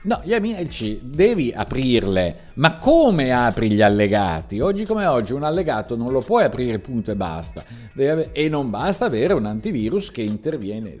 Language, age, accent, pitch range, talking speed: Italian, 50-69, native, 100-135 Hz, 175 wpm